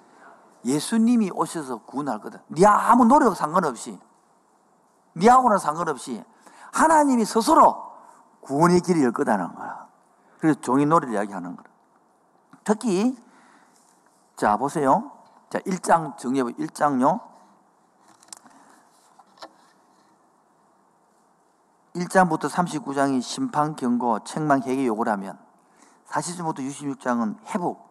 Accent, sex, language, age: native, male, Korean, 50-69